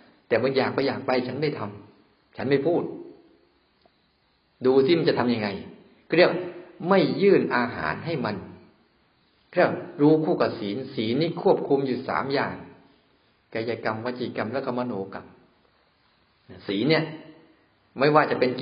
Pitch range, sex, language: 110-135 Hz, male, Thai